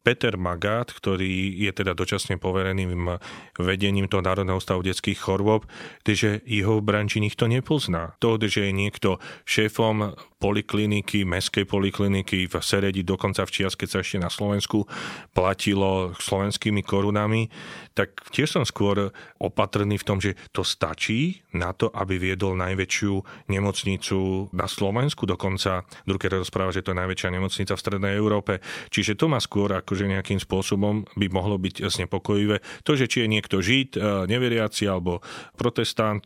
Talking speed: 145 wpm